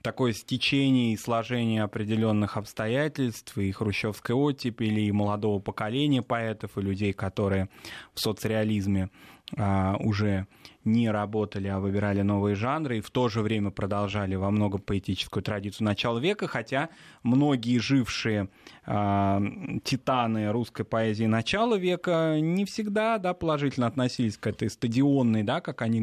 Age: 20-39